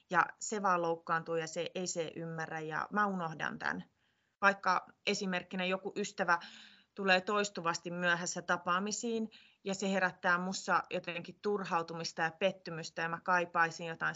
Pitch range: 170-240 Hz